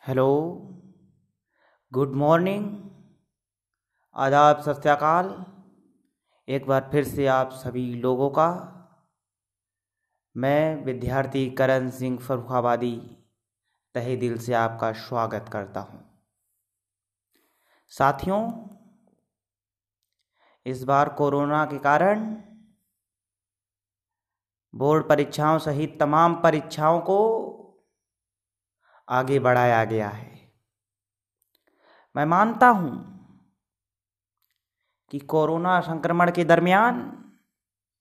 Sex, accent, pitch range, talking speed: male, native, 105-165 Hz, 75 wpm